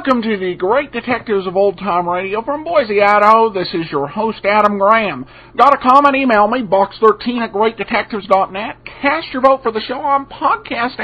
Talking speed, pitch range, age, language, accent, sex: 190 wpm, 165-235 Hz, 50-69, English, American, male